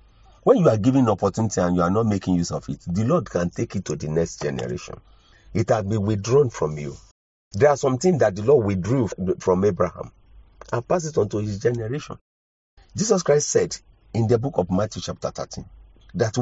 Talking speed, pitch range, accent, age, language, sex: 205 wpm, 90-120 Hz, Nigerian, 40-59, English, male